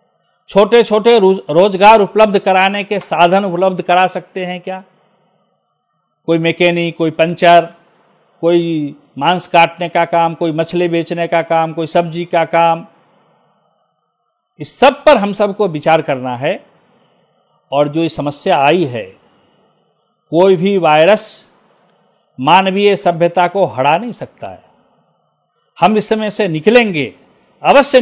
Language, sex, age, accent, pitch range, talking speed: Hindi, male, 50-69, native, 165-200 Hz, 135 wpm